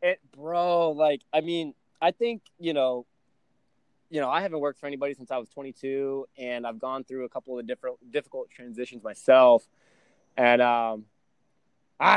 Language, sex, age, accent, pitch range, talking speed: English, male, 20-39, American, 120-170 Hz, 170 wpm